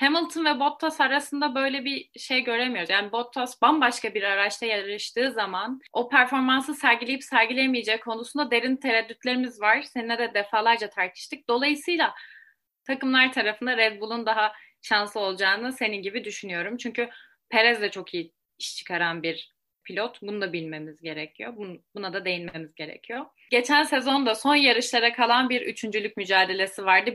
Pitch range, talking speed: 215-270 Hz, 140 wpm